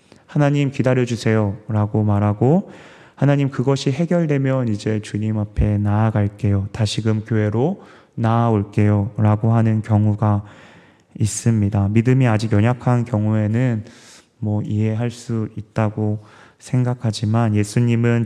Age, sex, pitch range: 20-39, male, 105-125 Hz